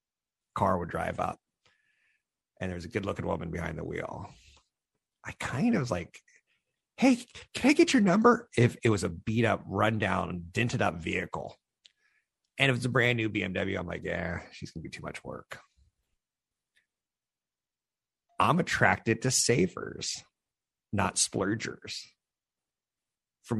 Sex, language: male, English